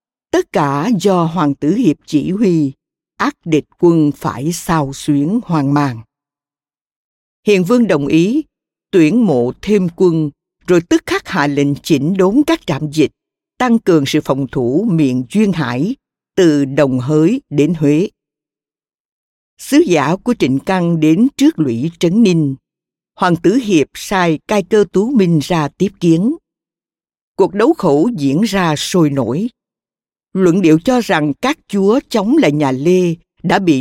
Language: Vietnamese